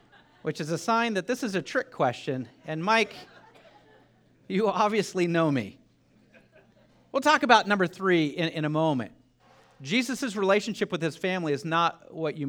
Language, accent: English, American